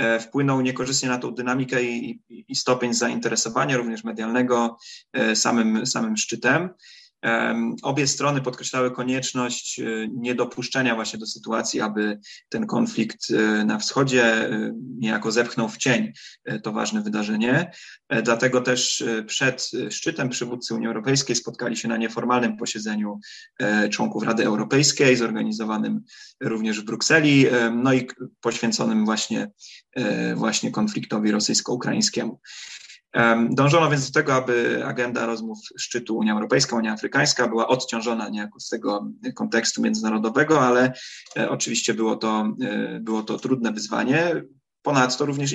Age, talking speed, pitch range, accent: 20-39, 120 wpm, 110-130 Hz, native